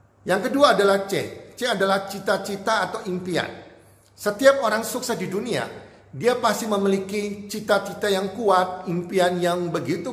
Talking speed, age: 135 wpm, 40-59